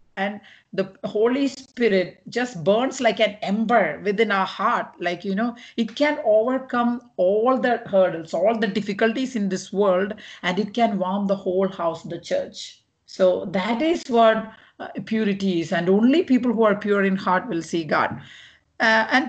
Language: English